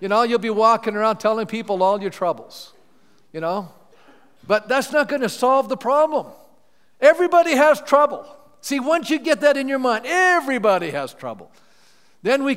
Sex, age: male, 50-69